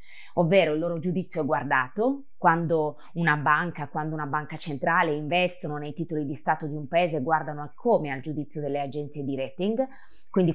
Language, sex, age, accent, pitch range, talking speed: Italian, female, 20-39, native, 150-195 Hz, 170 wpm